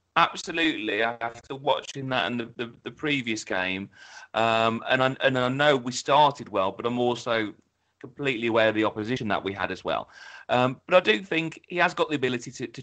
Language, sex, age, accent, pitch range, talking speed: English, male, 30-49, British, 115-145 Hz, 205 wpm